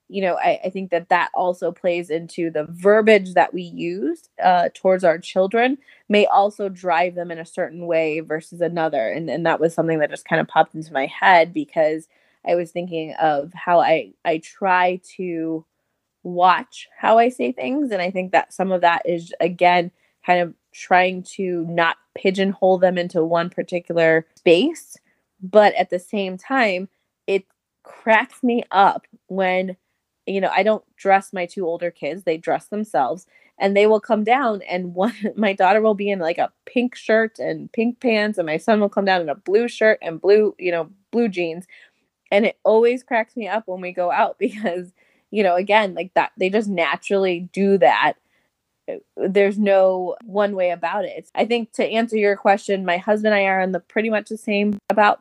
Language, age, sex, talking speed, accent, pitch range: English, 20-39, female, 195 wpm, American, 175-210 Hz